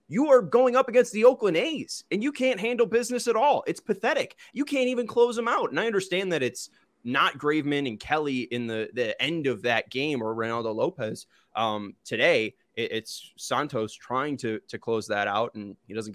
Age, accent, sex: 20-39, American, male